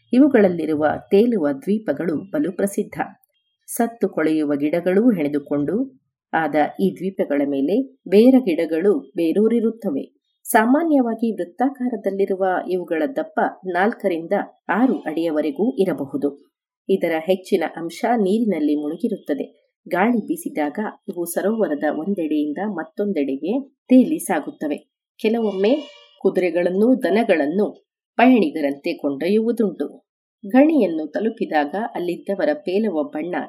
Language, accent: Kannada, native